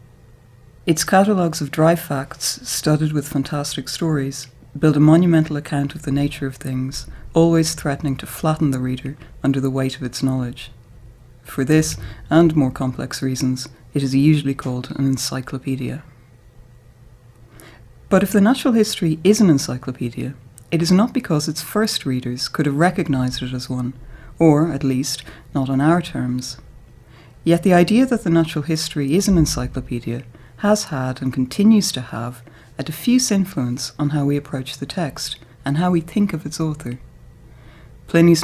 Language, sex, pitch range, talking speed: English, female, 125-165 Hz, 160 wpm